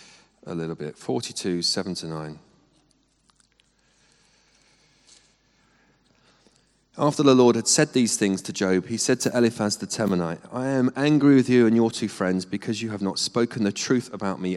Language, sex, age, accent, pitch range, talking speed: English, male, 30-49, British, 90-120 Hz, 165 wpm